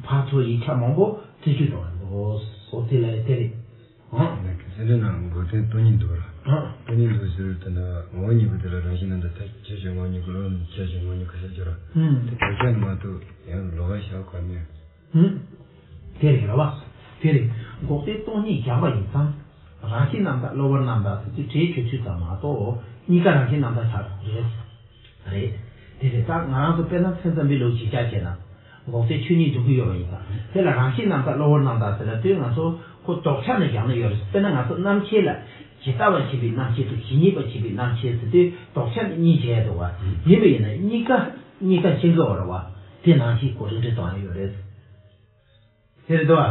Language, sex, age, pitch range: English, male, 60-79, 100-145 Hz